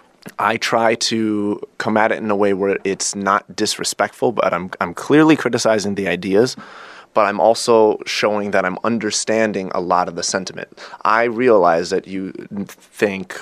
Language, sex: English, male